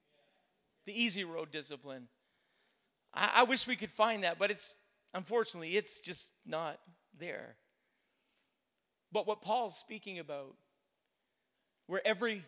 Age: 40-59